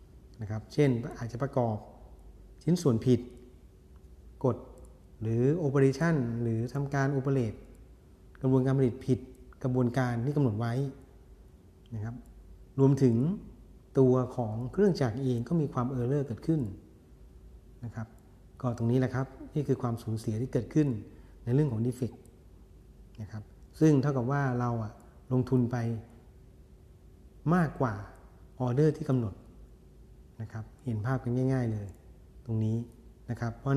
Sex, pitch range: male, 110-130 Hz